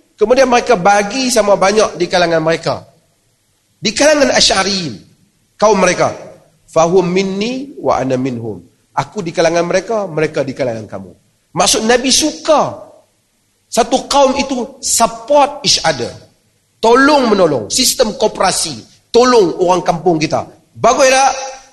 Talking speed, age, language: 120 wpm, 40-59, Malay